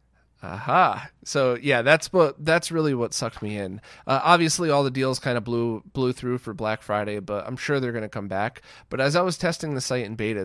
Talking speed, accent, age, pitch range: 240 wpm, American, 30-49, 115-150 Hz